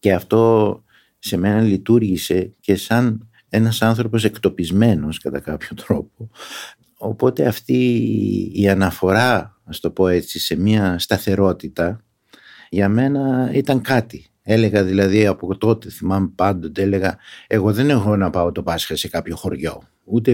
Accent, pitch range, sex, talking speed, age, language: native, 95-125 Hz, male, 135 wpm, 60-79, Greek